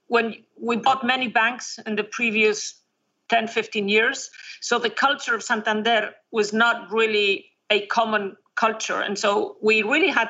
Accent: Spanish